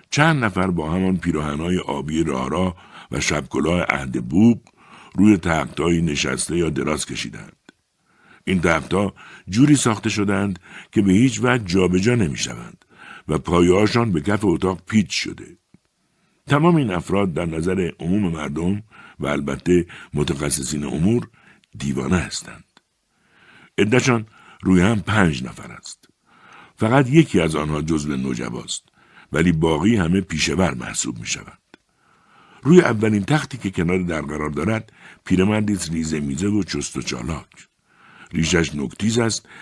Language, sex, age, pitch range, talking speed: Persian, male, 60-79, 80-110 Hz, 125 wpm